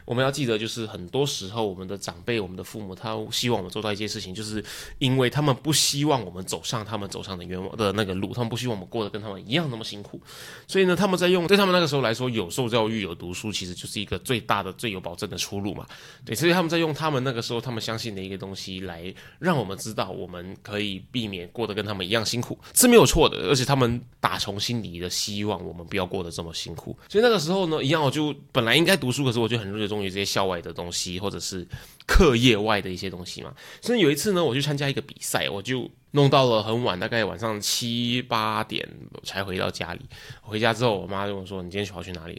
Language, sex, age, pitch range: Chinese, male, 20-39, 95-130 Hz